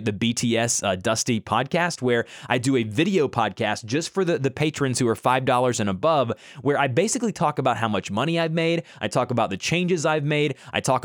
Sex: male